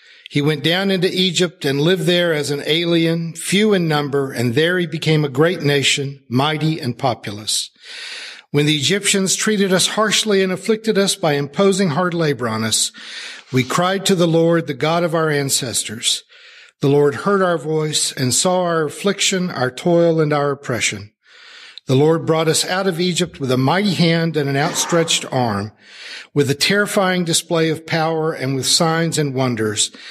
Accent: American